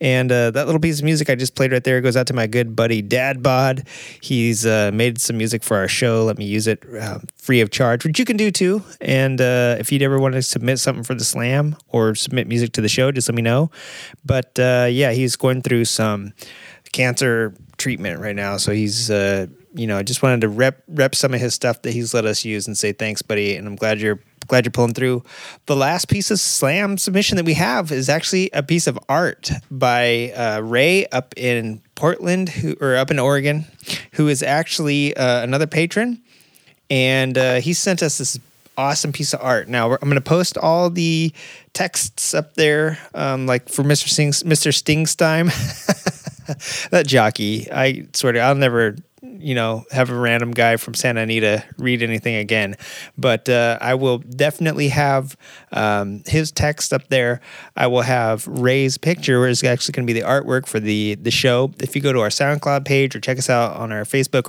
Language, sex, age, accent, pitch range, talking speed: English, male, 30-49, American, 115-145 Hz, 210 wpm